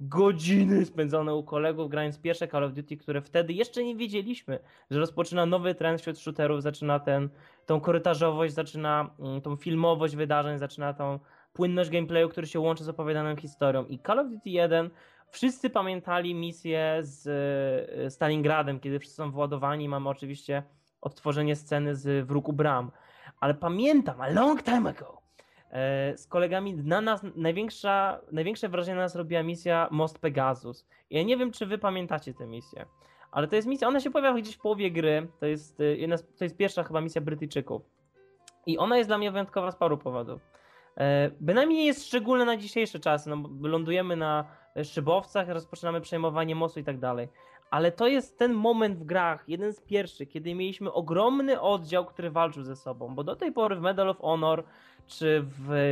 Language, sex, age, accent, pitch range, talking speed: Polish, male, 20-39, native, 150-190 Hz, 170 wpm